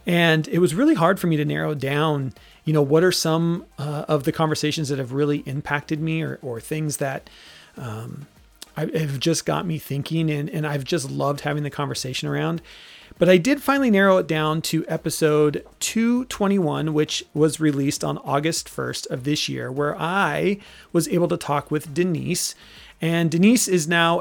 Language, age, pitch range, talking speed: English, 30-49, 150-180 Hz, 185 wpm